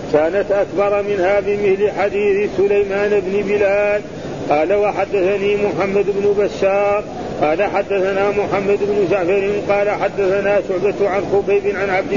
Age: 40-59